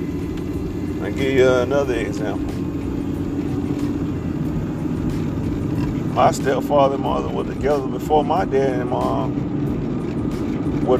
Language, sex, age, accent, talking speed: English, male, 40-59, American, 95 wpm